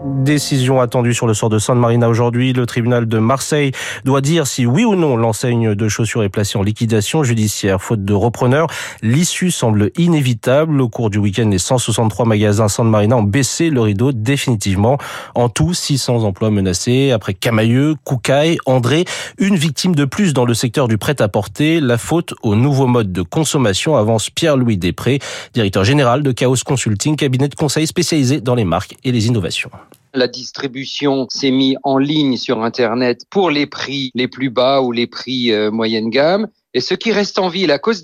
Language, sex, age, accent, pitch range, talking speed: French, male, 30-49, French, 120-160 Hz, 185 wpm